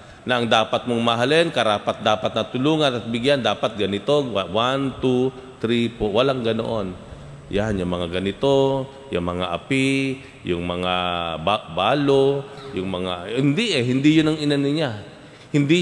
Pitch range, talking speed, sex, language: 100-135 Hz, 140 wpm, male, Filipino